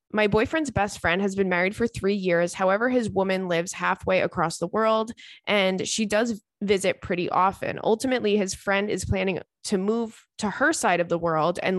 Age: 20-39